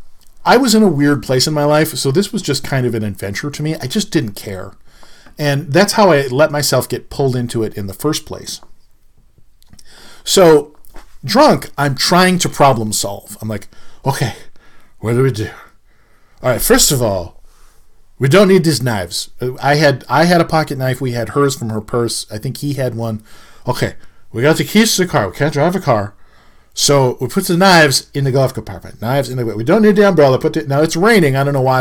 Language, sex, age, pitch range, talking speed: English, male, 40-59, 115-160 Hz, 225 wpm